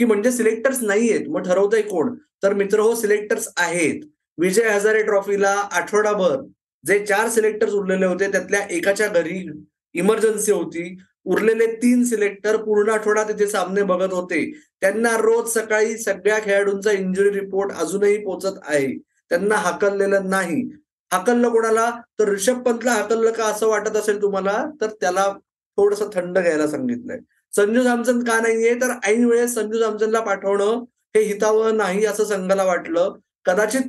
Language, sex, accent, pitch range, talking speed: Marathi, male, native, 190-225 Hz, 105 wpm